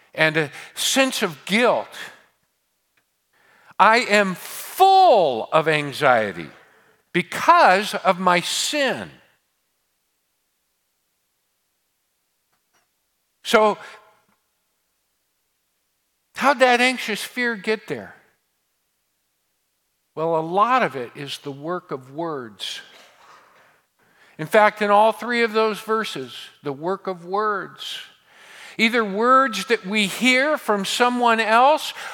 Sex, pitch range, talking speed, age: male, 160-245 Hz, 95 wpm, 50-69